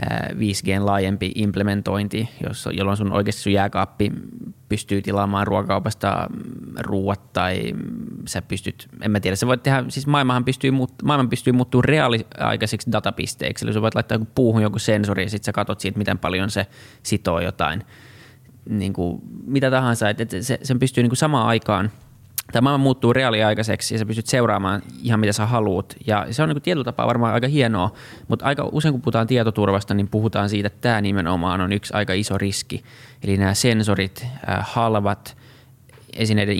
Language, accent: Finnish, native